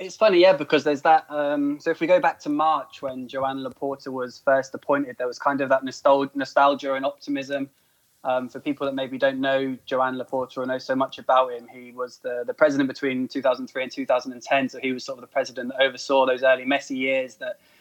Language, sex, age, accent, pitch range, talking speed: English, male, 20-39, British, 130-145 Hz, 220 wpm